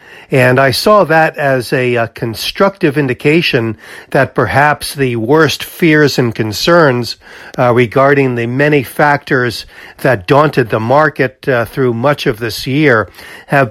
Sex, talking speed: male, 140 wpm